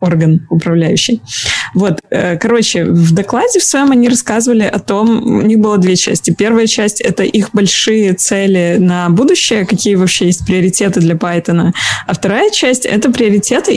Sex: female